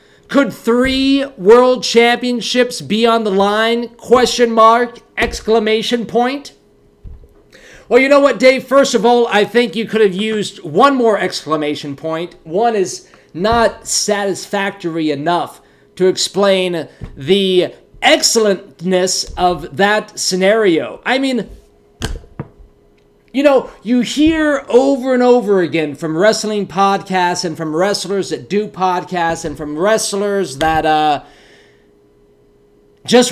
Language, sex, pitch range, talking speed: English, male, 185-240 Hz, 120 wpm